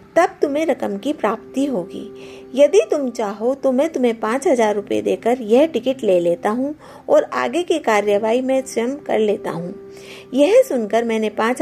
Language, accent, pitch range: Hindi, native, 205-290 Hz